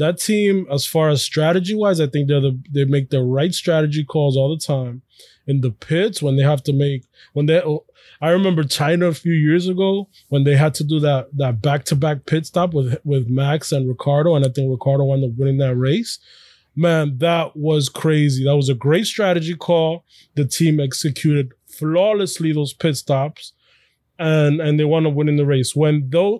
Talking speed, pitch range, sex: 210 wpm, 140-175 Hz, male